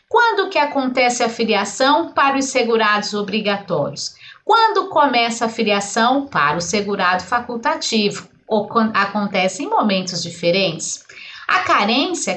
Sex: female